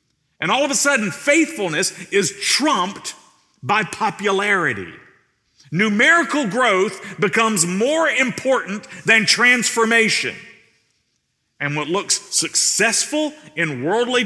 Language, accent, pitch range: English, American, 155-240 Hz